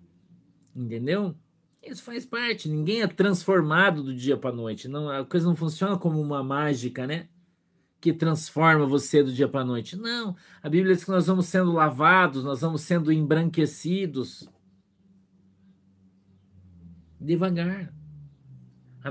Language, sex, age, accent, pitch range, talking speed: Portuguese, male, 50-69, Brazilian, 140-180 Hz, 135 wpm